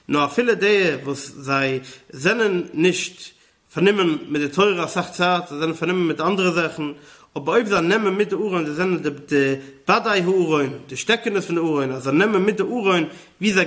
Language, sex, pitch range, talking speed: English, male, 165-200 Hz, 185 wpm